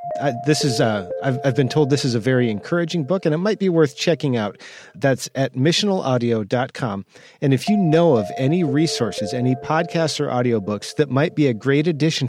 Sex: male